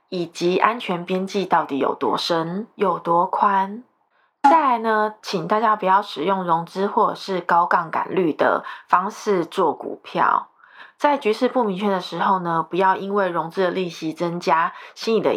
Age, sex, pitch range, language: 20-39, female, 180-225 Hz, Chinese